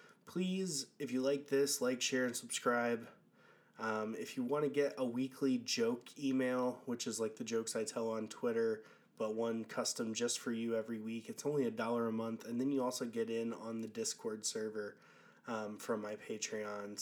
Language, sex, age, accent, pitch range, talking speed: English, male, 20-39, American, 115-170 Hz, 200 wpm